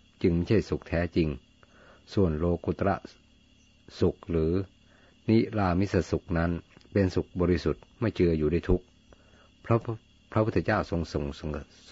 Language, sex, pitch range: Thai, male, 80-95 Hz